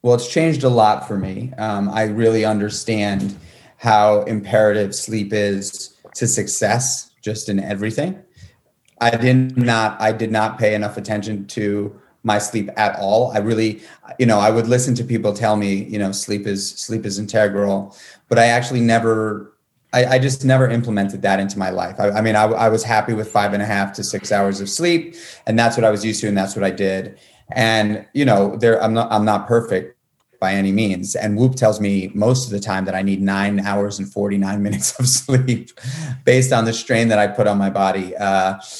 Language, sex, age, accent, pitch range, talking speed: English, male, 30-49, American, 100-120 Hz, 210 wpm